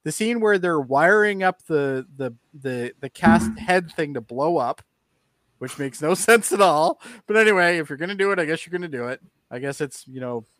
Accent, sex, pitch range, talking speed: American, male, 125-175 Hz, 240 wpm